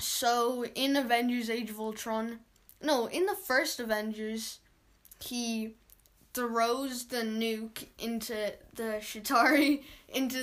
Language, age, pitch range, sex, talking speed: English, 10-29, 220-235 Hz, female, 110 wpm